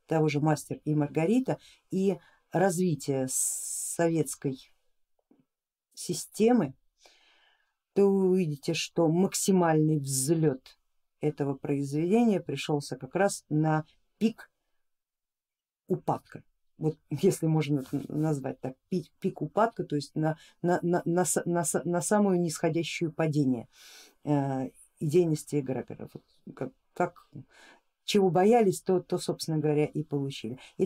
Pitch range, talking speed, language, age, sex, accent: 150-200 Hz, 95 wpm, Russian, 50-69, female, native